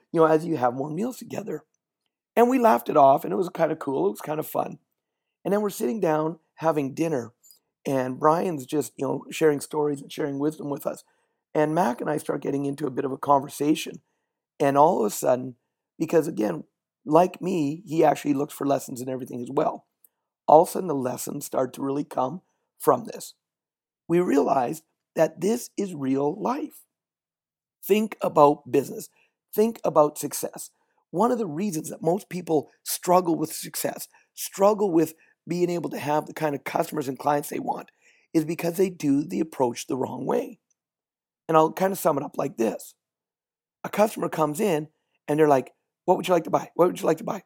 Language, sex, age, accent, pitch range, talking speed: English, male, 50-69, American, 145-180 Hz, 200 wpm